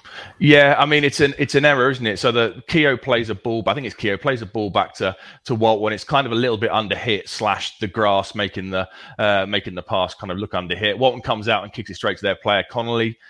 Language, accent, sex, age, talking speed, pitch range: English, British, male, 30-49, 275 wpm, 95-115 Hz